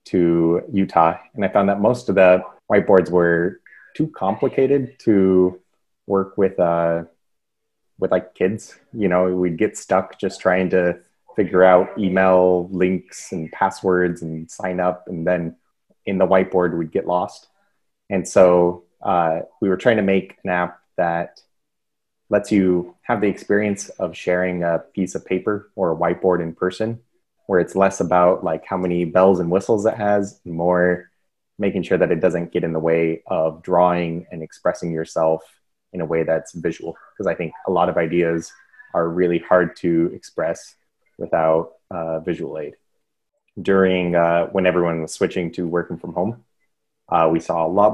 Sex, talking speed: male, 170 wpm